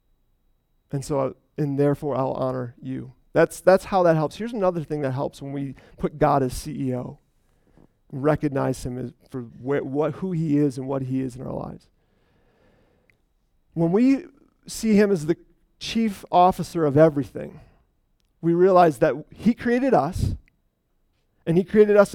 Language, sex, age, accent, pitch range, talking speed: English, male, 40-59, American, 140-185 Hz, 165 wpm